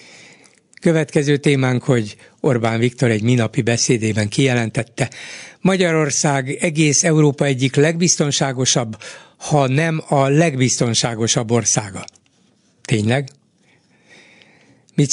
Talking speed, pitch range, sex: 85 wpm, 120-150 Hz, male